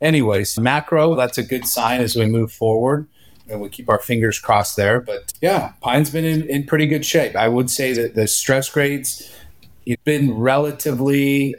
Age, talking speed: 30-49, 190 wpm